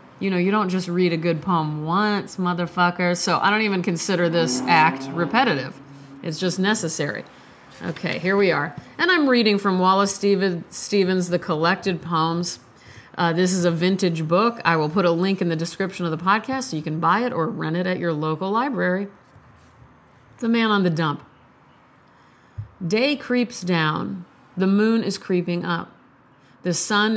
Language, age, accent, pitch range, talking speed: English, 40-59, American, 170-195 Hz, 175 wpm